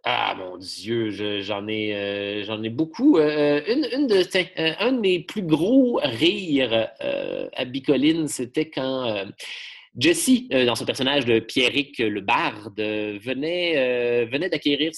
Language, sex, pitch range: French, male, 120-160 Hz